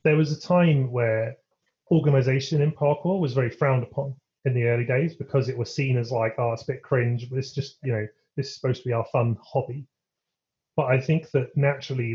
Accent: British